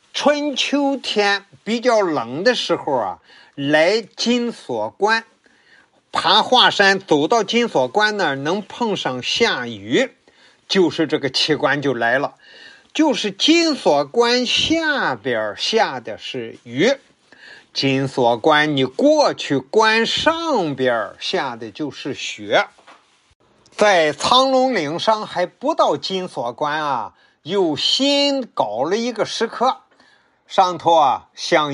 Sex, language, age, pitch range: male, Chinese, 50-69, 155-250 Hz